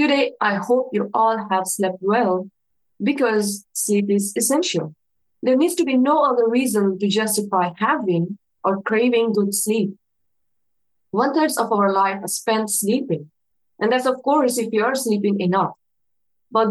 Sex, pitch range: female, 200-240 Hz